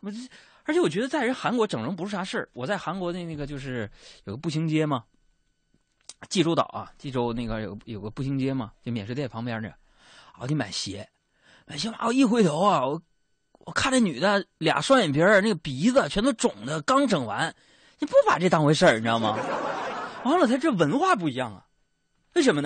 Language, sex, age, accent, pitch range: Chinese, male, 20-39, native, 125-205 Hz